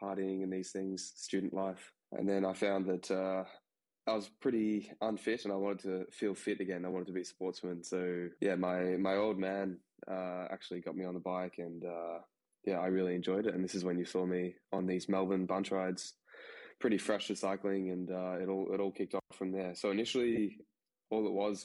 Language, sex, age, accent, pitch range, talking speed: English, male, 10-29, Australian, 90-100 Hz, 220 wpm